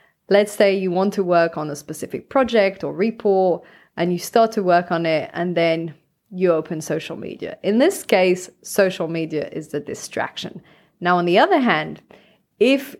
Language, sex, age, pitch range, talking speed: English, female, 20-39, 170-220 Hz, 180 wpm